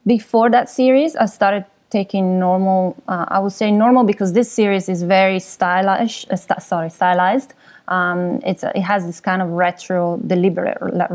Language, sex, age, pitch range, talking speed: English, female, 20-39, 175-210 Hz, 150 wpm